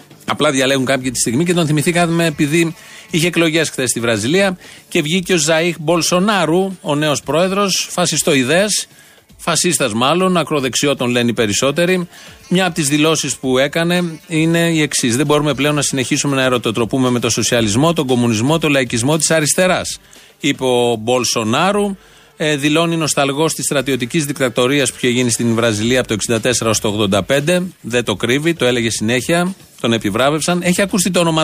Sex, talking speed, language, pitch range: male, 160 wpm, Greek, 125-165 Hz